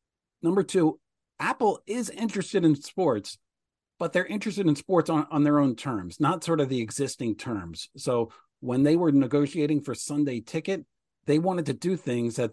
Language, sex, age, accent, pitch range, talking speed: English, male, 40-59, American, 115-155 Hz, 175 wpm